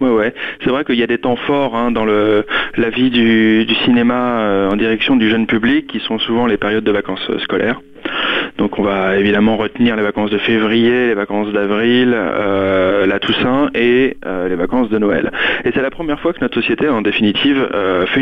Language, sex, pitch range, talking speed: French, male, 105-125 Hz, 215 wpm